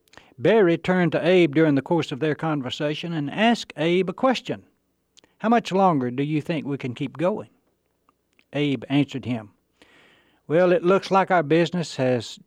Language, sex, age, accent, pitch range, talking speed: English, male, 60-79, American, 135-175 Hz, 170 wpm